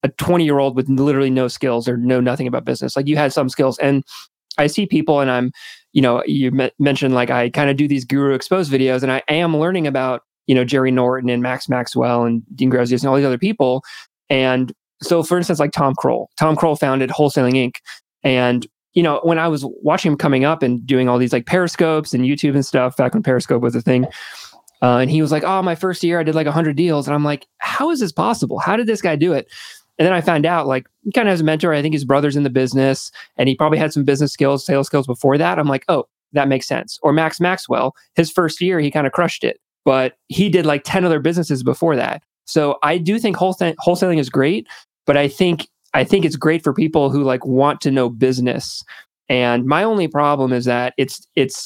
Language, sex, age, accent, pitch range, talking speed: English, male, 20-39, American, 130-165 Hz, 245 wpm